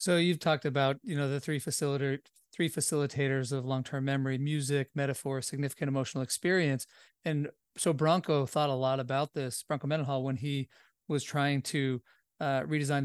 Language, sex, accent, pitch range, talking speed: English, male, American, 135-165 Hz, 165 wpm